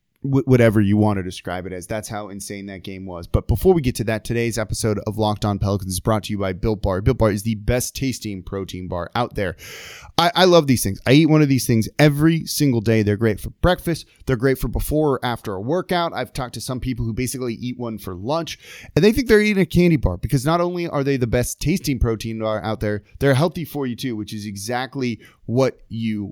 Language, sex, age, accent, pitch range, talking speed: English, male, 20-39, American, 105-140 Hz, 250 wpm